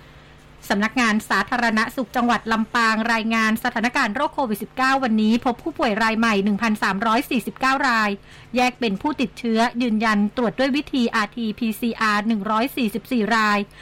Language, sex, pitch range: Thai, female, 215-255 Hz